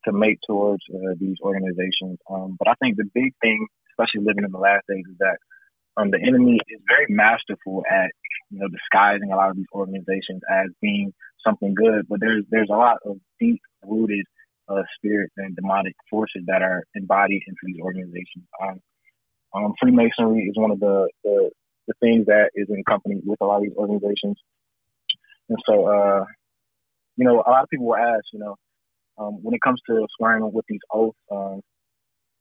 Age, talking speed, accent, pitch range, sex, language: 20-39, 185 wpm, American, 100-115 Hz, male, English